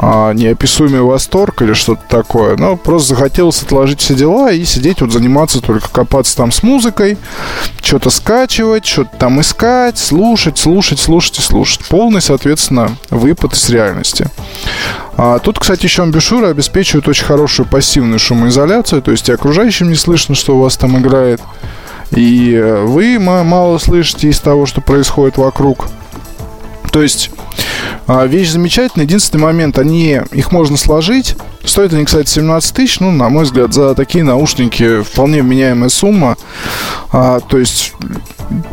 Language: Russian